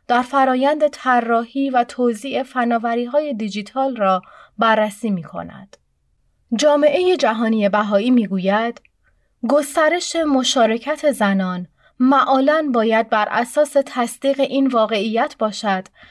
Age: 30-49